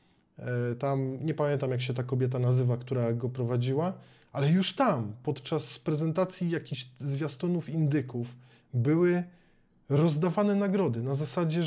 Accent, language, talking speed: native, Polish, 125 wpm